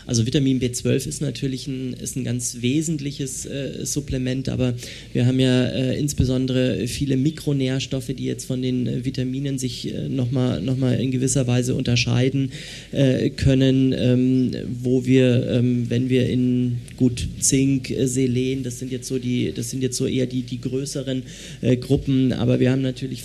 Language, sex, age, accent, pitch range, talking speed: German, male, 30-49, German, 125-130 Hz, 175 wpm